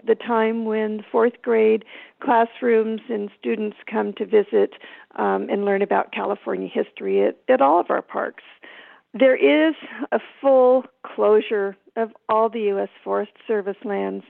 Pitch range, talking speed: 195-235 Hz, 145 wpm